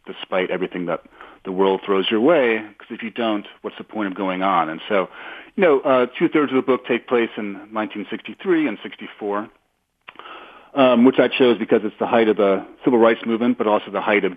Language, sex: English, male